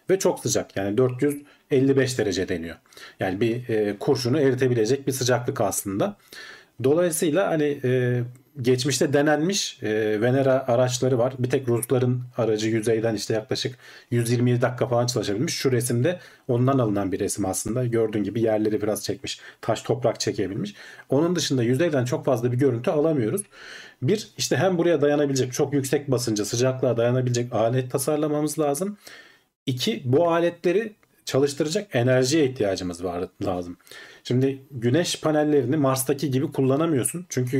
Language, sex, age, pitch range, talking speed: Turkish, male, 40-59, 120-145 Hz, 135 wpm